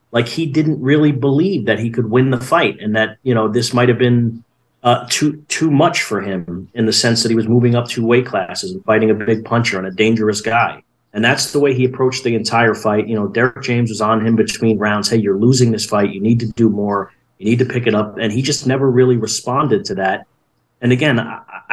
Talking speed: 250 wpm